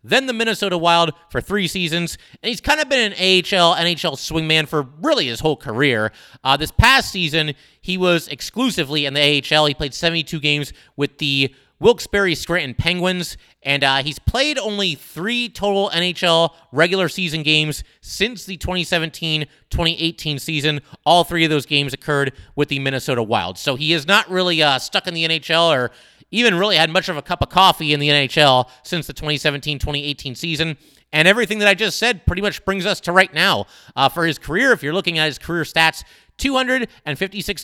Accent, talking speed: American, 185 wpm